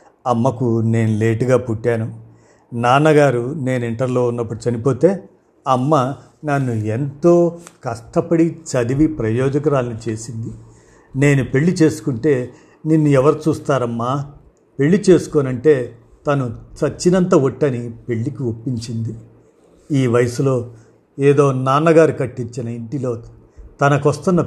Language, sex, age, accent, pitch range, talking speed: Telugu, male, 50-69, native, 120-150 Hz, 90 wpm